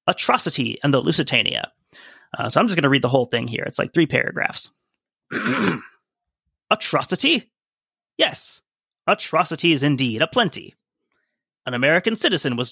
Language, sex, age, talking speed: English, male, 30-49, 135 wpm